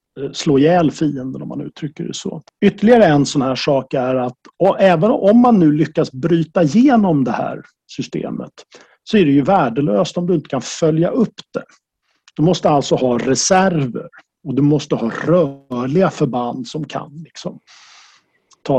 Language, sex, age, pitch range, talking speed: Swedish, male, 50-69, 140-185 Hz, 170 wpm